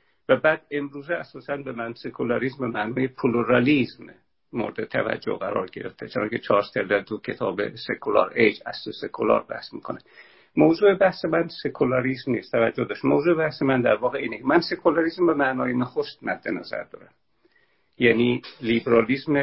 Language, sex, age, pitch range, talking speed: Persian, male, 50-69, 120-165 Hz, 150 wpm